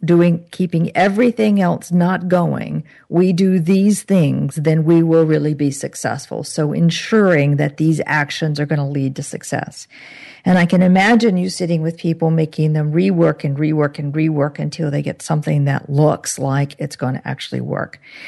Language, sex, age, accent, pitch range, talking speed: English, female, 50-69, American, 150-175 Hz, 175 wpm